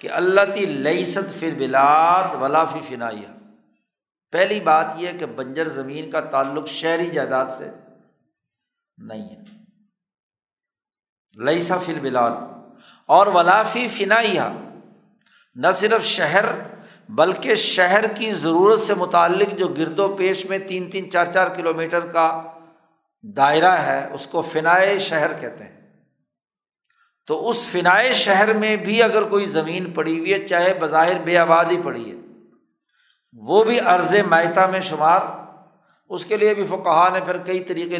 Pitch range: 155-195 Hz